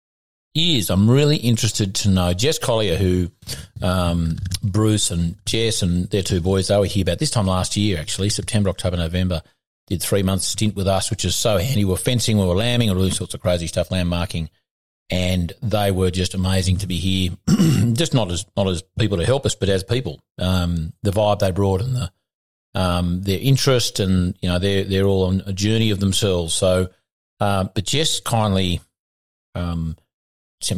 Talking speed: 195 wpm